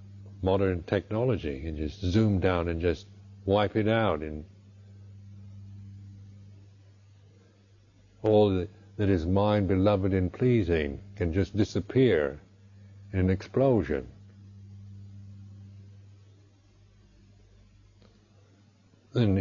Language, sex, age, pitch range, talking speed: English, male, 60-79, 95-105 Hz, 80 wpm